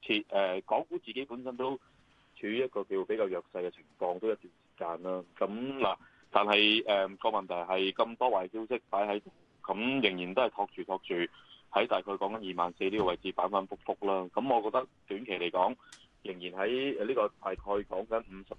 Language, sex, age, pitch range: Chinese, male, 20-39, 95-130 Hz